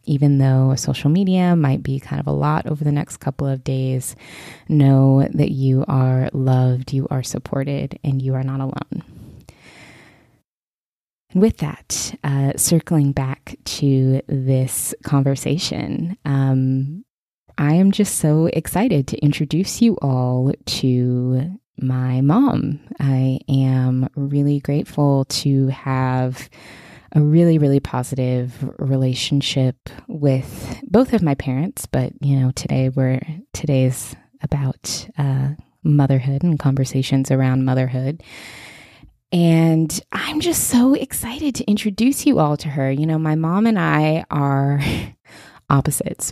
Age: 20-39